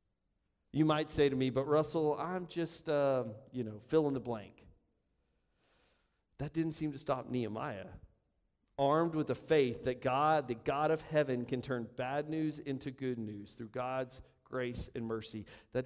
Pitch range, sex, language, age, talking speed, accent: 110-150 Hz, male, English, 40-59, 170 wpm, American